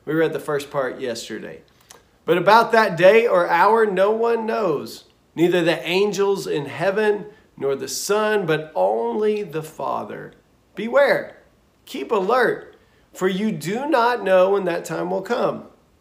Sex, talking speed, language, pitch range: male, 150 wpm, English, 155-200 Hz